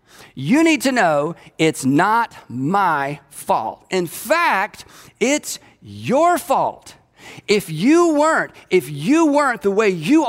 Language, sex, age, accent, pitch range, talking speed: English, male, 40-59, American, 145-200 Hz, 130 wpm